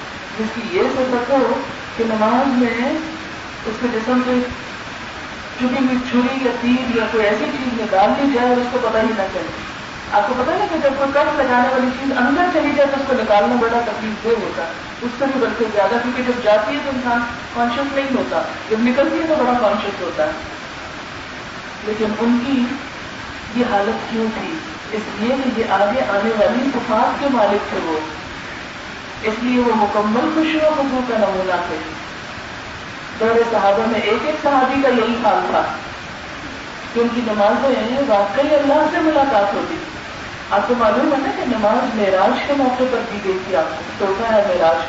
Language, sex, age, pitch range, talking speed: Urdu, female, 40-59, 210-260 Hz, 180 wpm